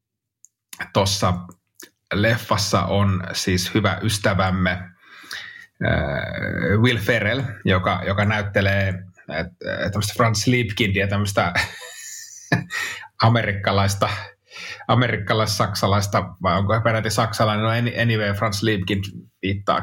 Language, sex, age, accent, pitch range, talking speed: Finnish, male, 30-49, native, 100-120 Hz, 90 wpm